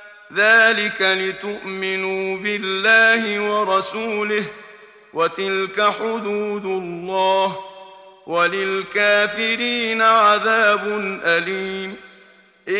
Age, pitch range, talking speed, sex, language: 50-69, 190-225 Hz, 45 wpm, male, Arabic